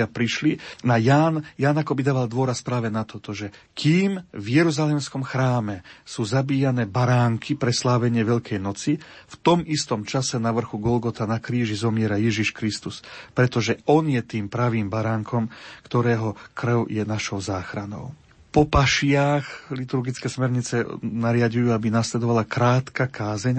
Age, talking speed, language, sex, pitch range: 40-59, 135 wpm, Slovak, male, 115-140 Hz